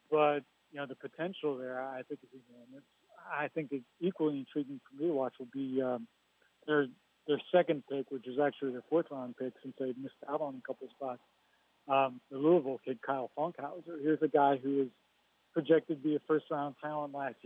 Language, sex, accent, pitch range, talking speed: English, male, American, 135-150 Hz, 190 wpm